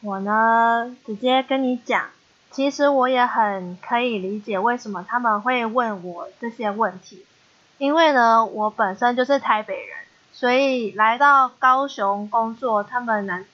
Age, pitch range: 20-39, 220-280 Hz